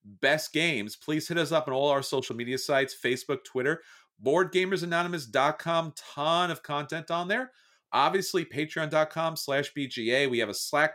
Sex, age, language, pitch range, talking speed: male, 40-59, English, 150-215 Hz, 155 wpm